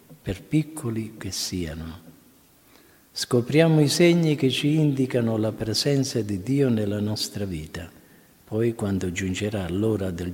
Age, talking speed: 50-69, 130 wpm